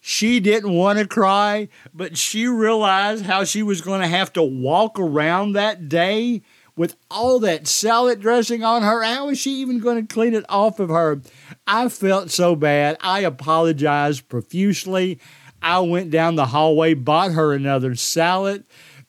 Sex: male